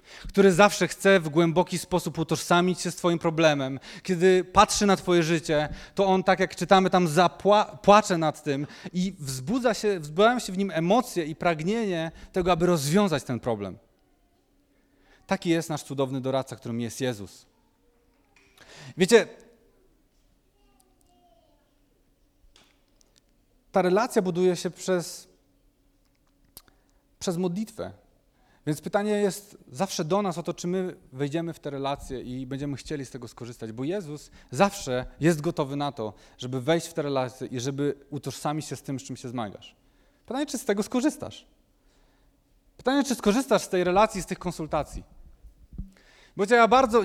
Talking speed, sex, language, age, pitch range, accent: 145 wpm, male, Polish, 40-59, 140-195 Hz, native